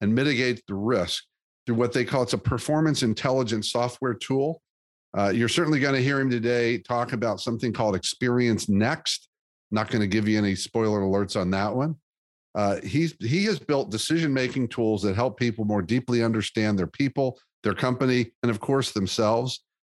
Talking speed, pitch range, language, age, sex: 180 wpm, 105-125 Hz, English, 50-69, male